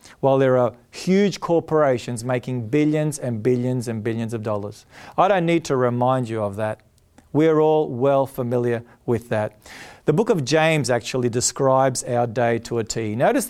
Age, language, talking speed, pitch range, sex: 40-59, English, 180 wpm, 130-190 Hz, male